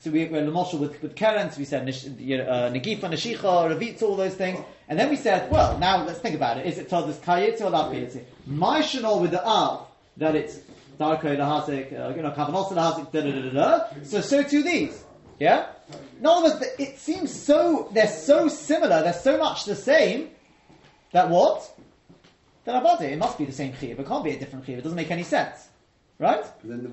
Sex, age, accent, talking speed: male, 30-49, British, 210 wpm